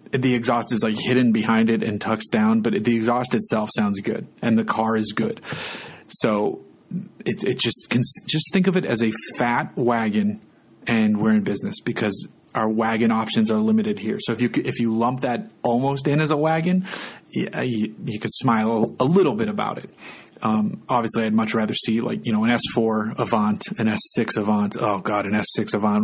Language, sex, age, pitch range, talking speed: English, male, 30-49, 110-130 Hz, 200 wpm